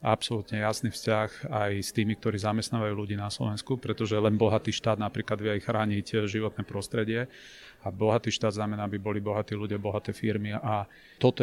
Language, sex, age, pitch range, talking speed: Slovak, male, 30-49, 105-115 Hz, 170 wpm